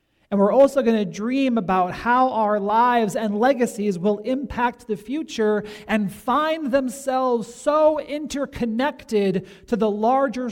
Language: English